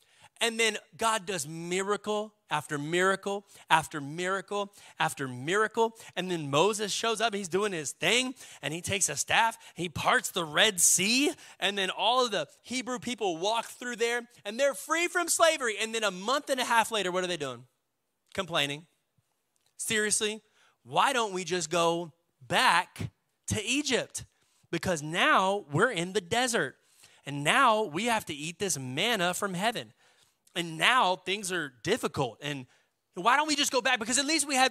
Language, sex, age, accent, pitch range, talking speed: English, male, 30-49, American, 170-240 Hz, 175 wpm